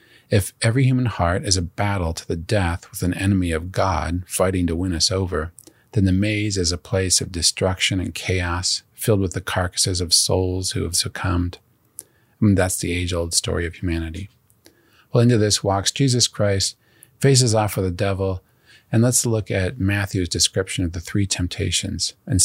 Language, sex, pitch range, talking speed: English, male, 90-110 Hz, 185 wpm